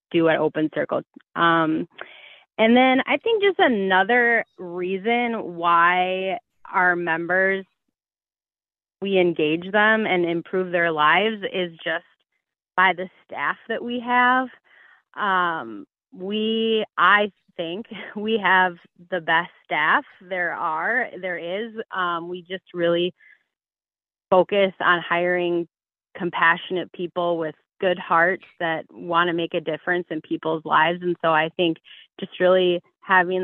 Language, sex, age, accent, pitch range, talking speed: English, female, 30-49, American, 170-205 Hz, 125 wpm